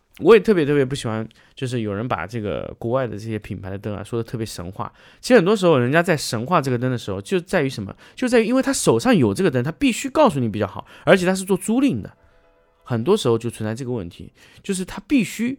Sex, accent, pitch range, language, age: male, native, 105-170 Hz, Chinese, 20-39